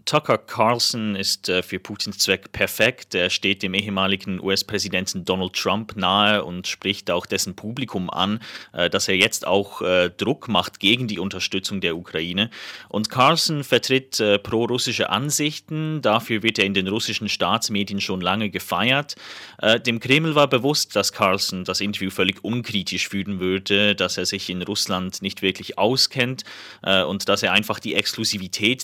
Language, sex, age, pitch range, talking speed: German, male, 30-49, 95-110 Hz, 165 wpm